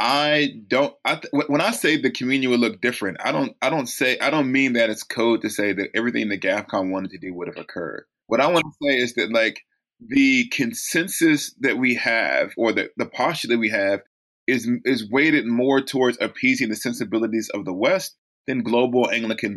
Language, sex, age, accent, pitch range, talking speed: English, male, 20-39, American, 115-150 Hz, 210 wpm